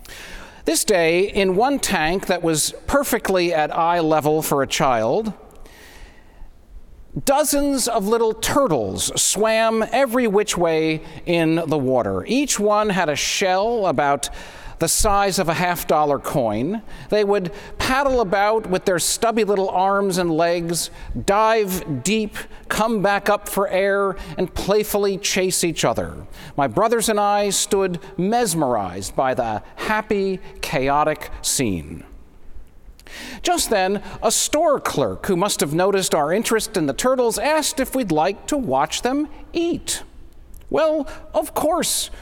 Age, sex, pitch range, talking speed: 40-59, male, 160-220 Hz, 140 wpm